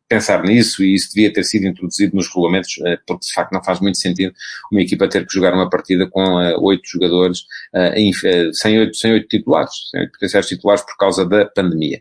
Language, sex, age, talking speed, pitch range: English, male, 30-49, 180 wpm, 95-125 Hz